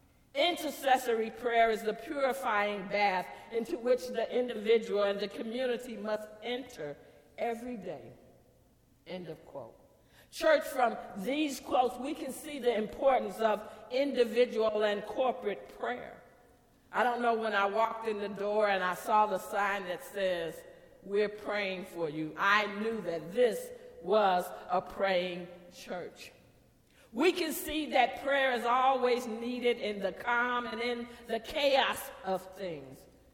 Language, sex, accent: English, female, American